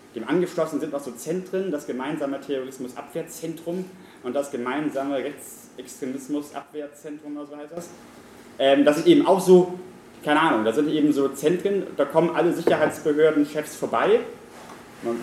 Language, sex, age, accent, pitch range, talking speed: German, male, 30-49, German, 140-170 Hz, 140 wpm